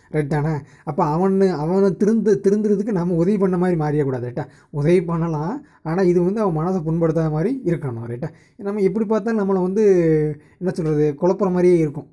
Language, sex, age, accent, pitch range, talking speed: Tamil, male, 20-39, native, 145-190 Hz, 170 wpm